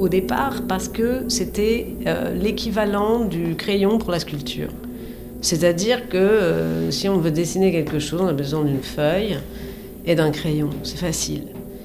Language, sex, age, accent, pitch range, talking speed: French, female, 40-59, French, 165-205 Hz, 155 wpm